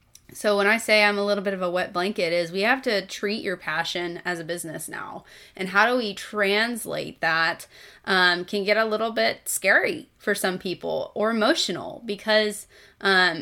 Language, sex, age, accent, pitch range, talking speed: English, female, 20-39, American, 180-210 Hz, 190 wpm